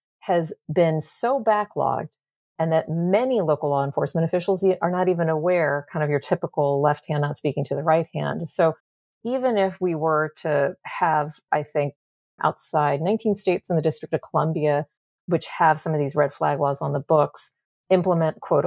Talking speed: 185 wpm